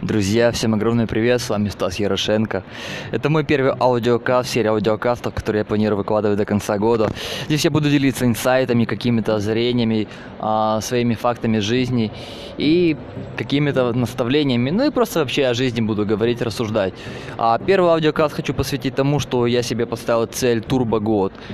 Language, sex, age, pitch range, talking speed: Russian, male, 20-39, 110-135 Hz, 160 wpm